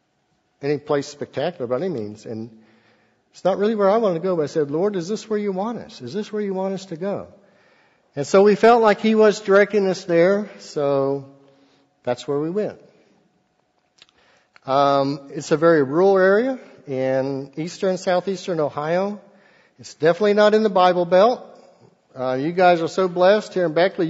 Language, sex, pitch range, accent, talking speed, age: English, male, 140-195 Hz, American, 185 wpm, 60-79